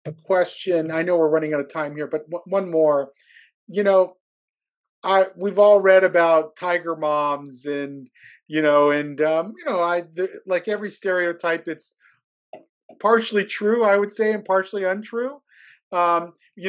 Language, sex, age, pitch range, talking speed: English, male, 40-59, 170-210 Hz, 160 wpm